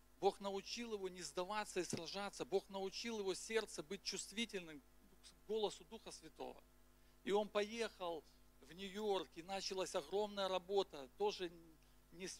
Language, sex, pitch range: Russian, male, 180-210 Hz